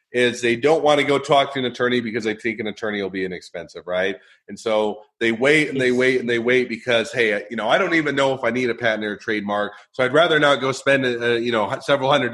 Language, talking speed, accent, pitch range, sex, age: English, 270 wpm, American, 110-130 Hz, male, 30-49